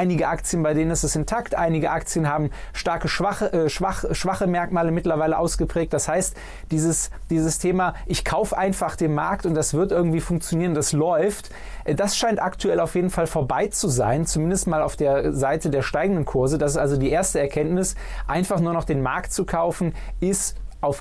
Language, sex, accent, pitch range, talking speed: German, male, German, 145-170 Hz, 190 wpm